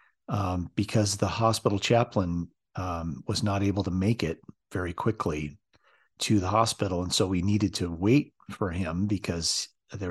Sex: male